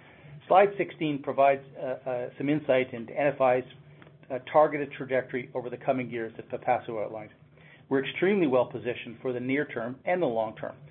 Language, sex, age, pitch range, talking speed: English, male, 40-59, 125-150 Hz, 170 wpm